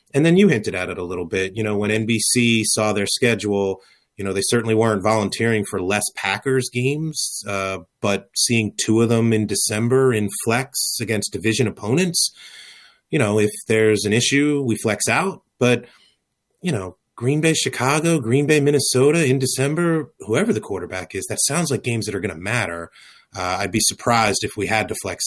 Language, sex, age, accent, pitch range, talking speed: English, male, 30-49, American, 105-120 Hz, 190 wpm